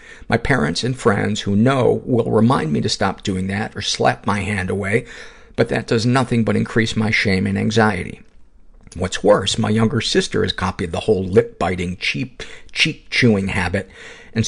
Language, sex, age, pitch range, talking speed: English, male, 50-69, 90-110 Hz, 170 wpm